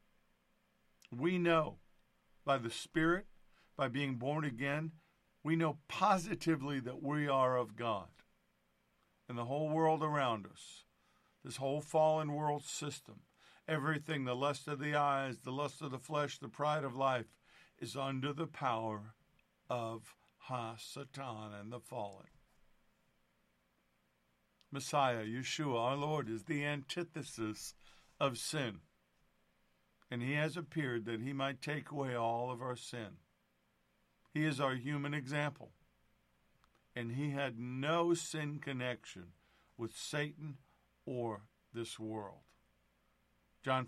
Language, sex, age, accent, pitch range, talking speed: English, male, 50-69, American, 110-150 Hz, 125 wpm